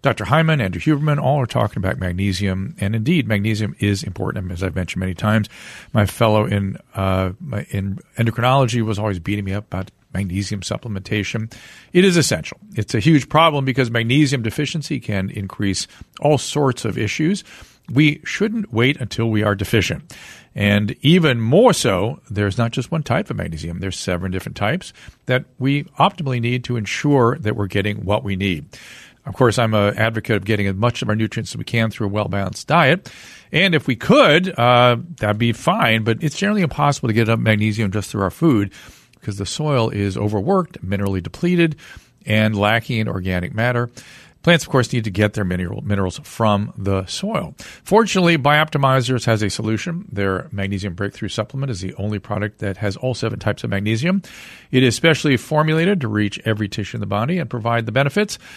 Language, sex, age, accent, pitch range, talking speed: English, male, 50-69, American, 100-140 Hz, 185 wpm